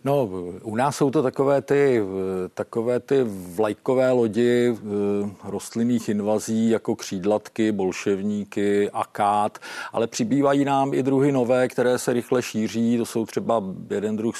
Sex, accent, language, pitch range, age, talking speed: male, native, Czech, 110-130 Hz, 50-69, 135 wpm